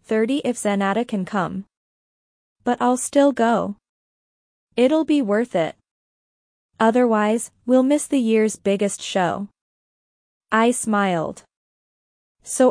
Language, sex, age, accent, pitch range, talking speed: English, female, 20-39, American, 200-245 Hz, 110 wpm